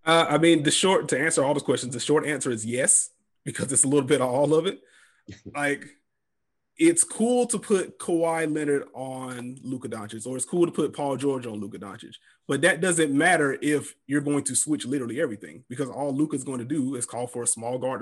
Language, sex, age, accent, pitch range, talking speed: English, male, 30-49, American, 125-150 Hz, 225 wpm